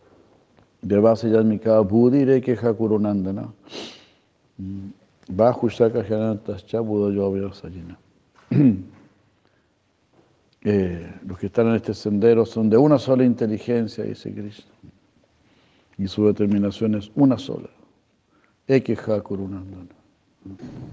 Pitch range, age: 100-115 Hz, 60-79